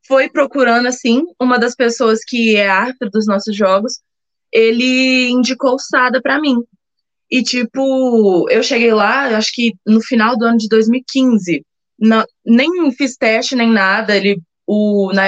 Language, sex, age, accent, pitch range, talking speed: Portuguese, female, 20-39, Brazilian, 205-250 Hz, 155 wpm